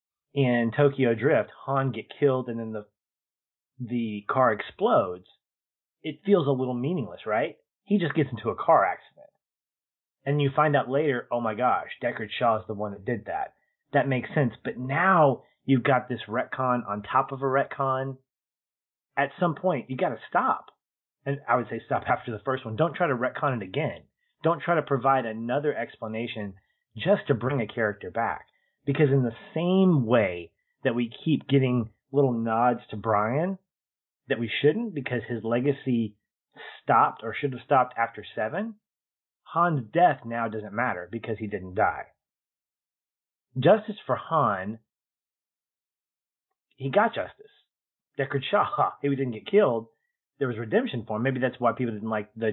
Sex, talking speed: male, 170 wpm